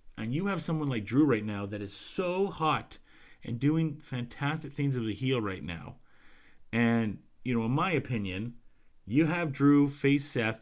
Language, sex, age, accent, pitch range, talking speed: English, male, 40-59, American, 105-135 Hz, 180 wpm